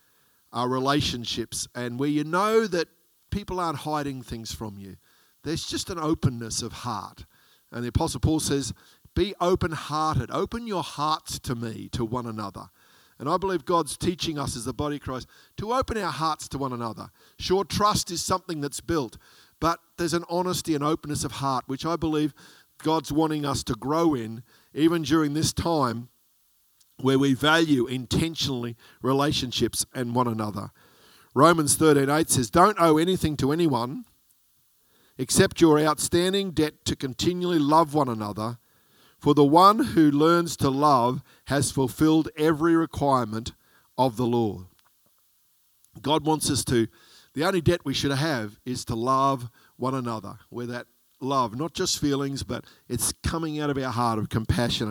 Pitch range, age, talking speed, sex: 120-160 Hz, 50-69, 160 wpm, male